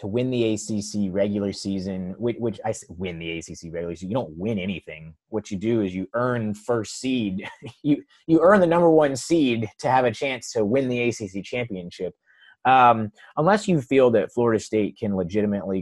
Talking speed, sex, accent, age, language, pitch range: 195 wpm, male, American, 30-49, English, 100-135 Hz